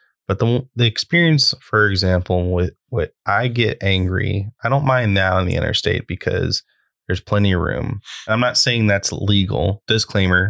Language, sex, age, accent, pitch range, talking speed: English, male, 20-39, American, 95-110 Hz, 170 wpm